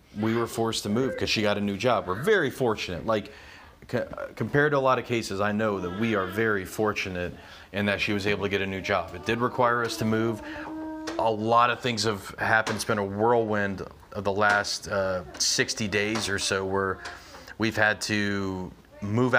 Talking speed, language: 210 wpm, English